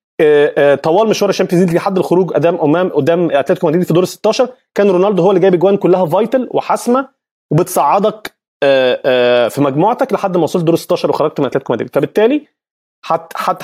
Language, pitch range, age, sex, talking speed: Arabic, 135-190 Hz, 30-49, male, 165 wpm